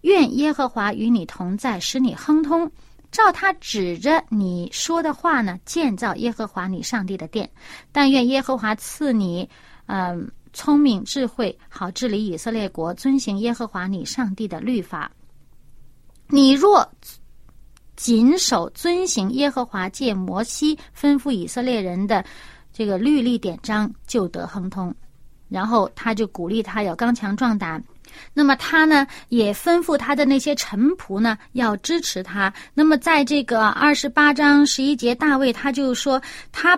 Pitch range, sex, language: 205-290 Hz, female, Chinese